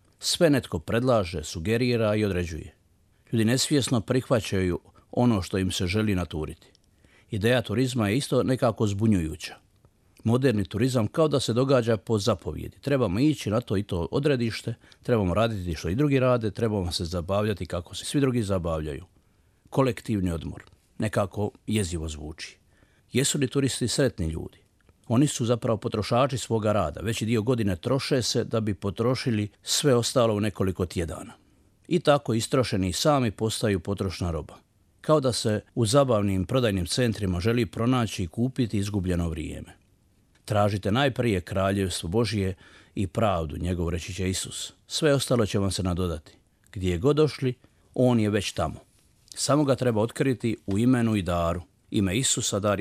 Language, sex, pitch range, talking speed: Croatian, male, 95-125 Hz, 150 wpm